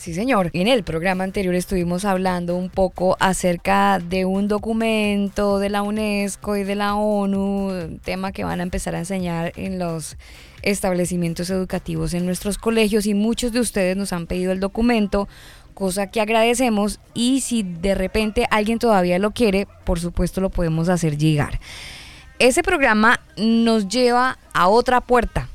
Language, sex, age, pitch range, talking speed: Spanish, female, 10-29, 175-220 Hz, 160 wpm